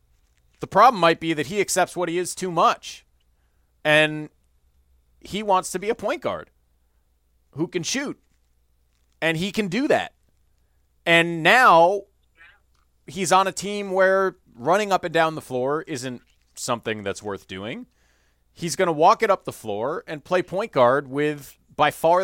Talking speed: 165 wpm